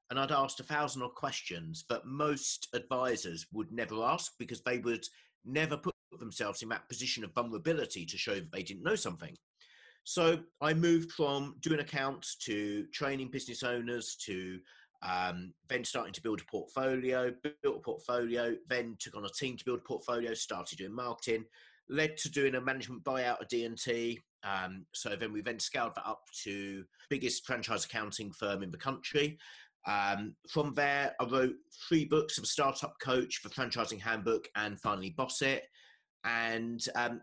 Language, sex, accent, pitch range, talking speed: English, male, British, 115-150 Hz, 175 wpm